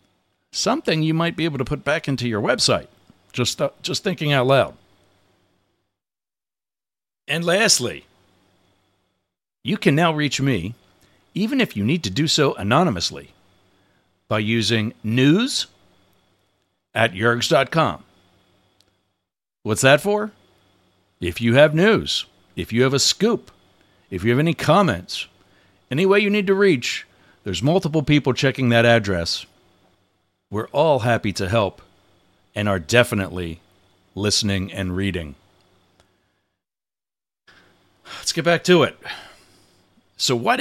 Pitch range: 95-120 Hz